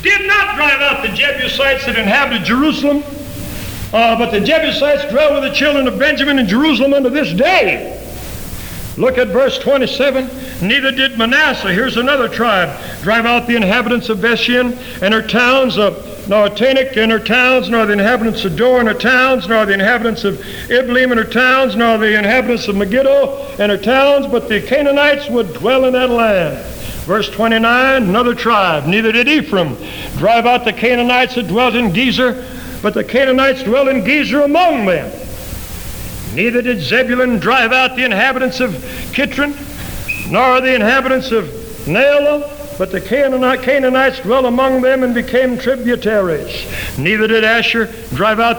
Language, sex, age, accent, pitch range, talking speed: English, male, 60-79, American, 225-265 Hz, 160 wpm